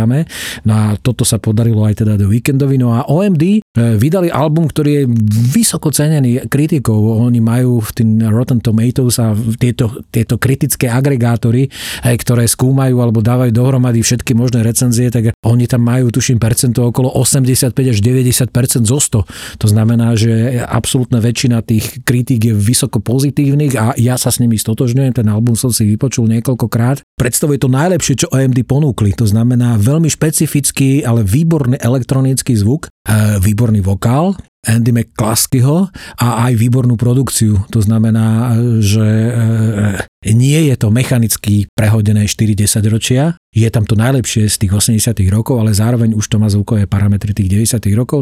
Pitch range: 110-130 Hz